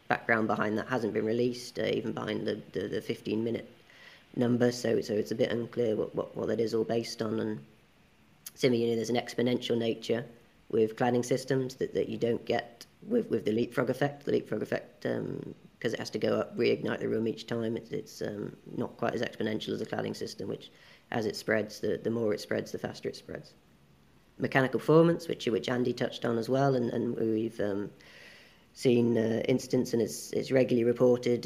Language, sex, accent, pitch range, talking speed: English, female, British, 115-125 Hz, 210 wpm